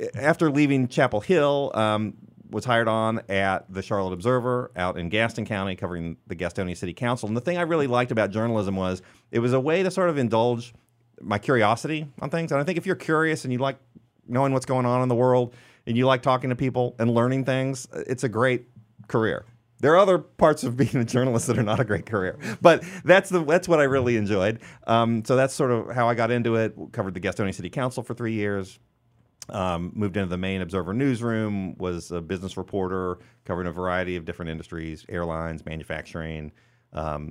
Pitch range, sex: 95-125 Hz, male